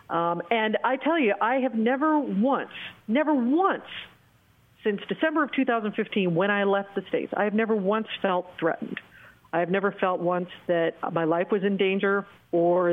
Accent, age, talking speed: American, 40-59, 175 wpm